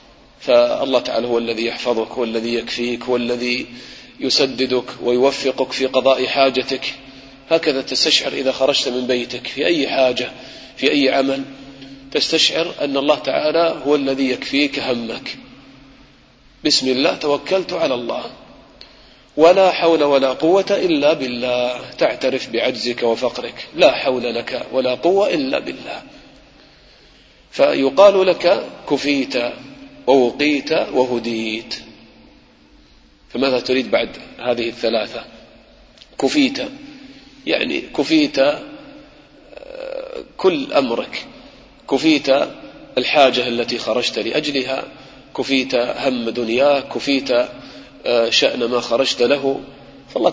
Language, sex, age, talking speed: English, male, 40-59, 100 wpm